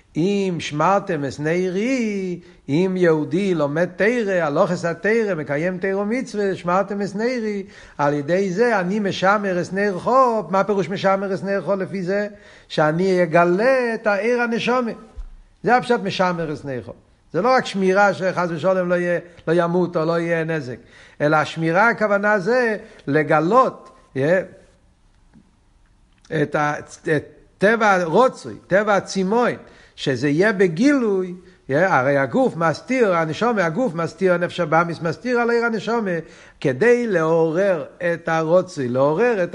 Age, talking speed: 60-79, 135 wpm